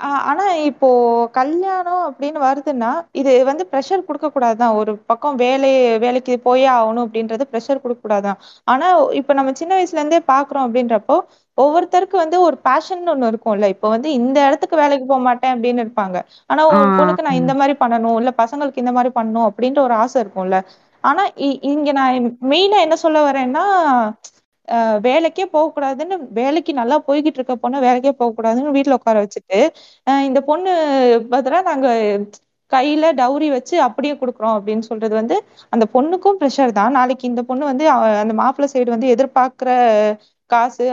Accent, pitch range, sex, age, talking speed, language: native, 235-305 Hz, female, 20-39, 160 wpm, Tamil